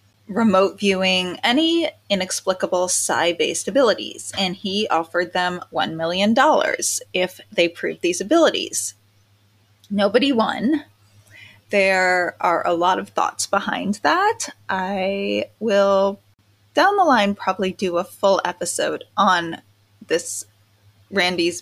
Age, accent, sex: 20-39, American, female